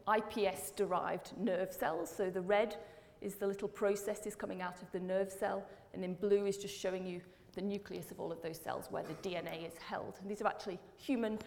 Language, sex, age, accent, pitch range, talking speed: English, female, 40-59, British, 190-220 Hz, 215 wpm